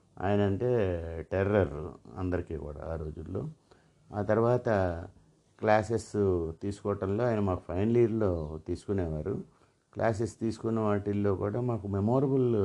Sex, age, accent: male, 50-69, native